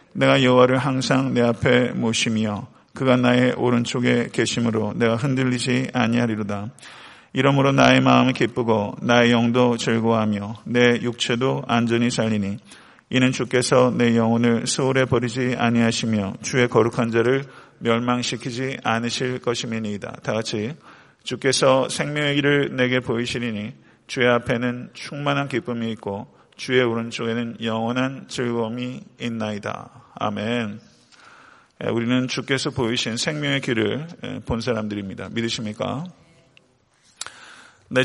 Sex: male